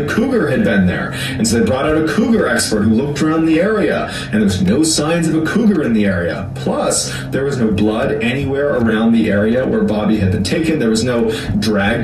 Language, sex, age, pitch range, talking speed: English, male, 30-49, 105-145 Hz, 230 wpm